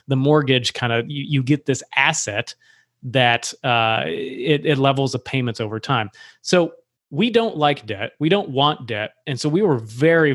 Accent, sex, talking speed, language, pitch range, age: American, male, 180 wpm, English, 125-155 Hz, 30-49